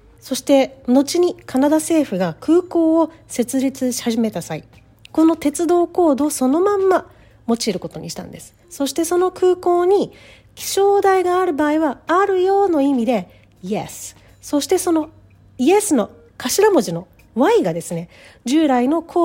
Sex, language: female, Japanese